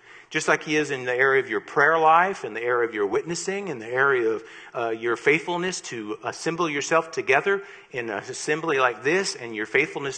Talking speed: 210 wpm